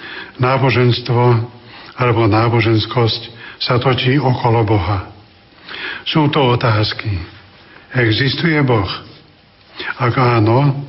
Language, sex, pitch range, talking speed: Slovak, male, 115-140 Hz, 75 wpm